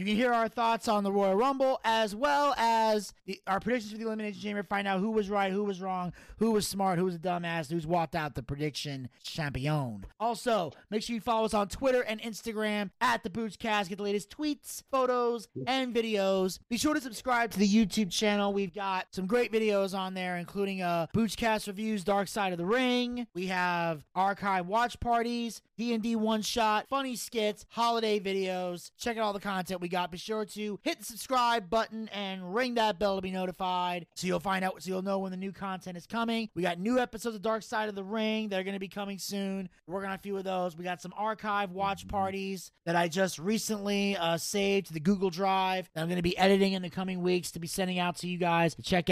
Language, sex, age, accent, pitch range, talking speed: English, male, 30-49, American, 180-220 Hz, 230 wpm